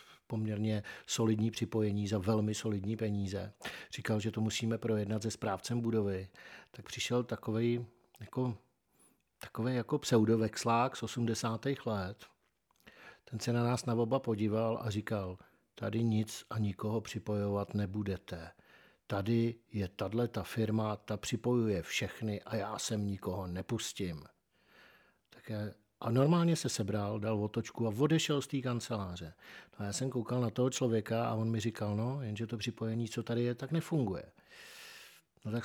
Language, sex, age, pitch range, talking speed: Czech, male, 50-69, 105-120 Hz, 145 wpm